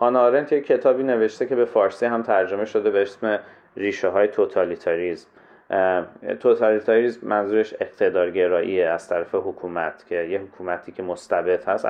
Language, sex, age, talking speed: Persian, male, 30-49, 135 wpm